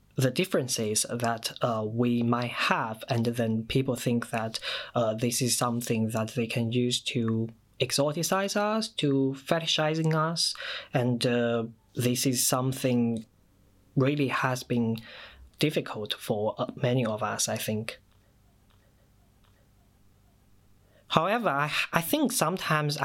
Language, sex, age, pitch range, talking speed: English, male, 20-39, 110-140 Hz, 120 wpm